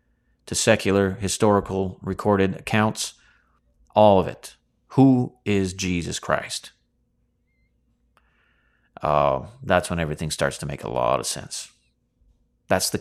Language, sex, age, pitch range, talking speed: English, male, 30-49, 90-125 Hz, 120 wpm